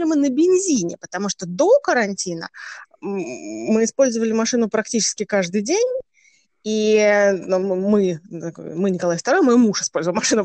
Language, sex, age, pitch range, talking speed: Russian, female, 20-39, 190-245 Hz, 125 wpm